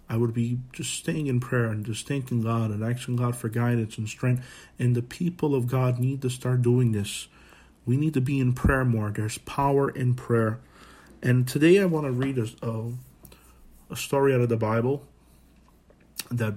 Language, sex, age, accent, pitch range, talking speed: English, male, 40-59, American, 115-135 Hz, 190 wpm